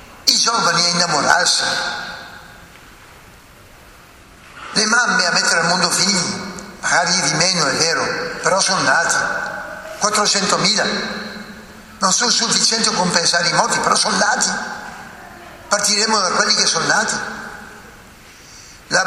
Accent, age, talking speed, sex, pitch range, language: native, 60-79, 115 wpm, male, 175-230 Hz, Italian